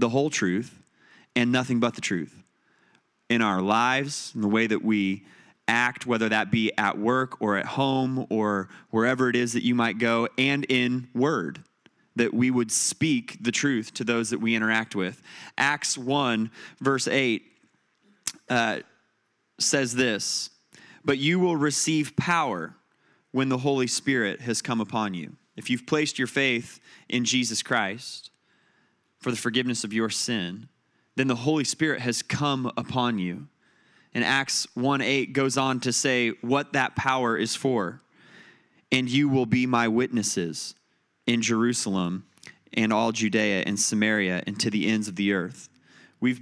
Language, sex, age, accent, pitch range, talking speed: English, male, 30-49, American, 110-135 Hz, 160 wpm